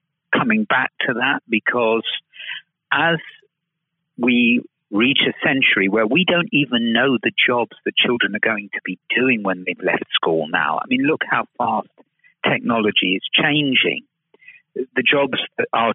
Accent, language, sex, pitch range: British, English, male, 110-165 Hz